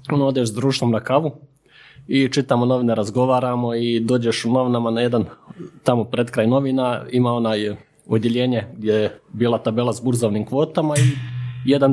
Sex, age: male, 30-49